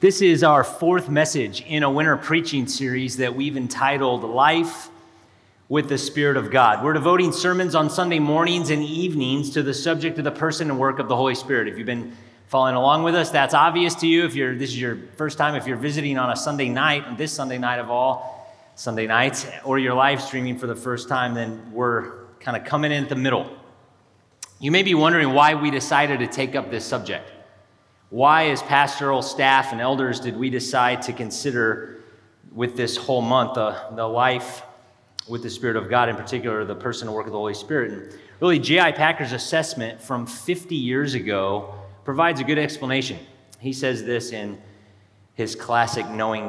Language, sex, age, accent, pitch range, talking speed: English, male, 30-49, American, 120-150 Hz, 195 wpm